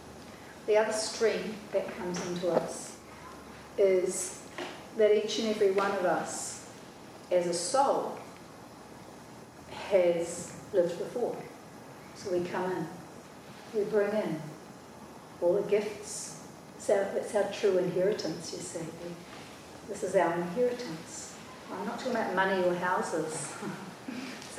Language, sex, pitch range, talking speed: English, female, 170-200 Hz, 120 wpm